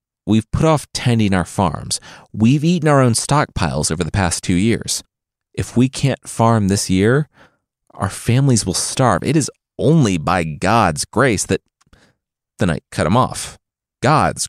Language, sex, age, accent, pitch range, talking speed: English, male, 30-49, American, 95-150 Hz, 160 wpm